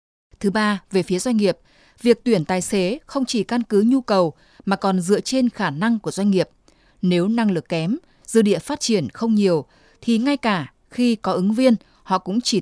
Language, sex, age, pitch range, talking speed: Vietnamese, female, 20-39, 175-230 Hz, 215 wpm